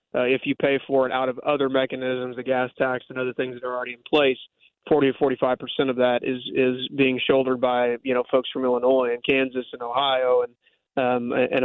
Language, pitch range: English, 125-140 Hz